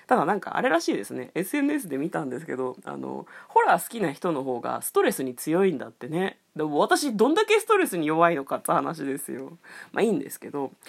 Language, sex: Japanese, female